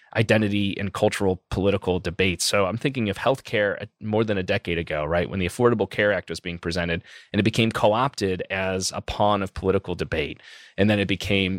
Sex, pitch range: male, 95-115 Hz